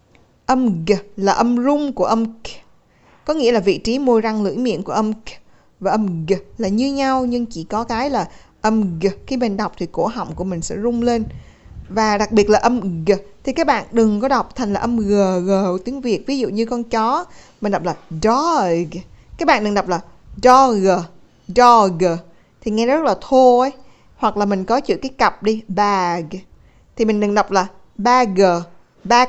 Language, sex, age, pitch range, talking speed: Vietnamese, female, 20-39, 195-245 Hz, 210 wpm